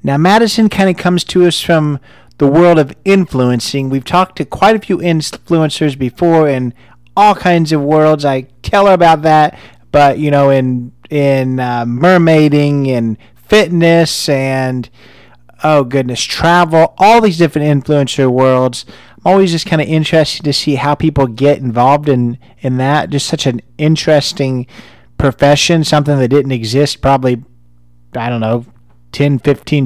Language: English